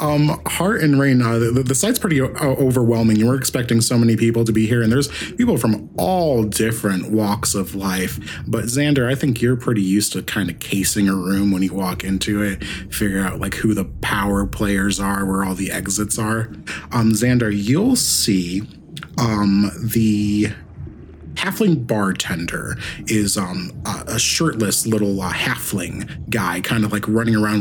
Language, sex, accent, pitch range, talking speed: English, male, American, 100-120 Hz, 175 wpm